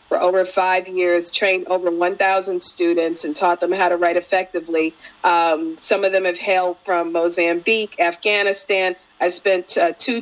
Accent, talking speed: American, 165 wpm